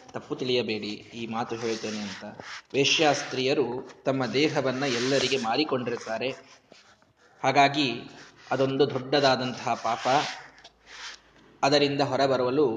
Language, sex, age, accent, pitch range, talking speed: Kannada, male, 20-39, native, 120-150 Hz, 80 wpm